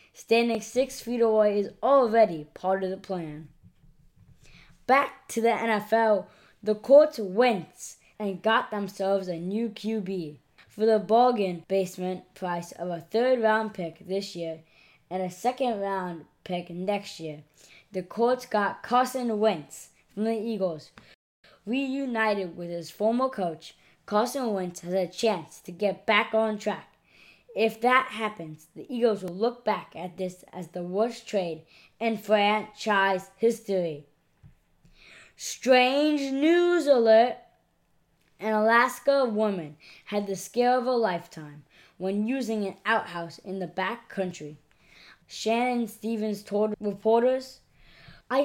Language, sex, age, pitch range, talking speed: English, female, 20-39, 180-230 Hz, 130 wpm